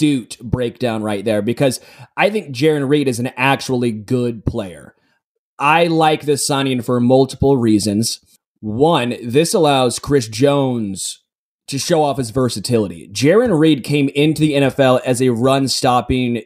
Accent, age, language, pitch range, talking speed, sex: American, 20-39, English, 120-145 Hz, 140 wpm, male